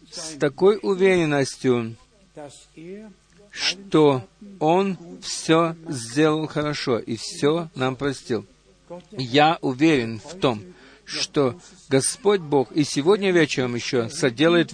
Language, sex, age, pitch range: Russian, male, 50-69, 145-190 Hz